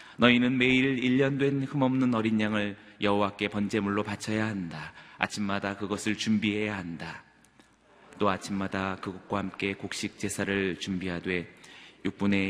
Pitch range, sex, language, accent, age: 95-115 Hz, male, Korean, native, 30-49